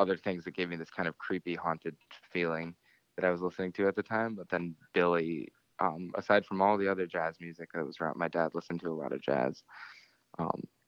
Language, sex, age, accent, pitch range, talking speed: English, male, 20-39, American, 85-95 Hz, 225 wpm